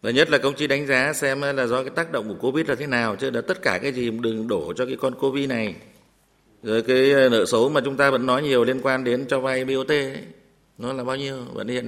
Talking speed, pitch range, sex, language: 275 wpm, 120-205 Hz, male, Vietnamese